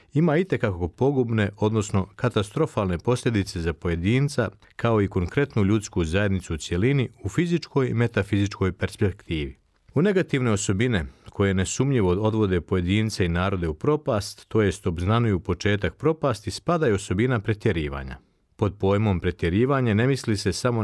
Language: Croatian